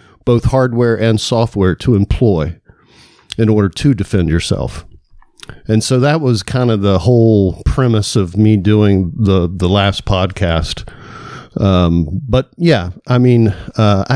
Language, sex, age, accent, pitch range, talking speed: English, male, 50-69, American, 100-125 Hz, 140 wpm